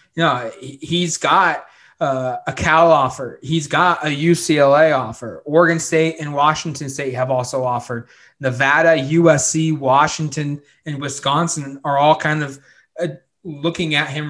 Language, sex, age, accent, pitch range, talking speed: English, male, 20-39, American, 135-160 Hz, 145 wpm